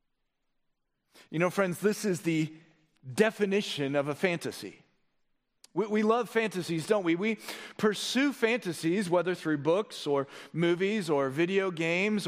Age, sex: 40-59, male